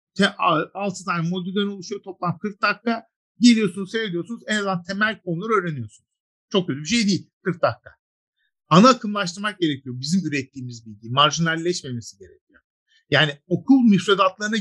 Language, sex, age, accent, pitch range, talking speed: Turkish, male, 50-69, native, 140-205 Hz, 125 wpm